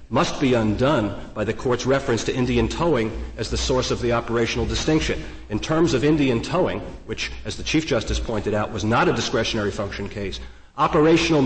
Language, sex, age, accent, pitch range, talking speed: English, male, 50-69, American, 105-130 Hz, 190 wpm